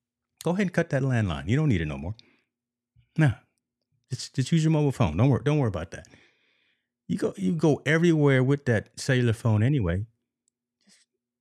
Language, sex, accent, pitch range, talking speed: English, male, American, 90-120 Hz, 190 wpm